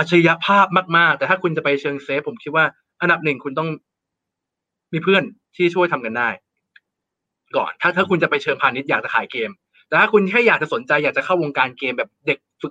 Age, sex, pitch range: 20-39, male, 145-200 Hz